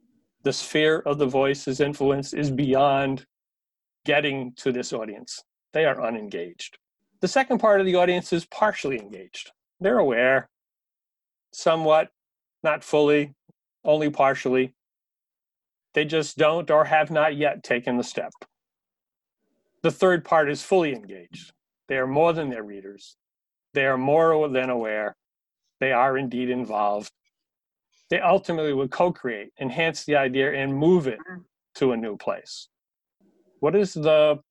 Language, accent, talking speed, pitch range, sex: English, American, 135 wpm, 135-165 Hz, male